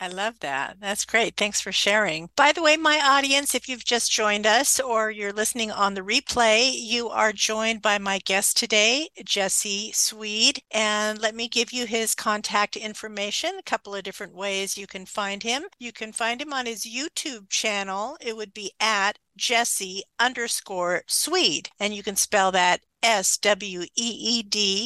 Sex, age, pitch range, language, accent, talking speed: female, 50-69, 195-235 Hz, English, American, 170 wpm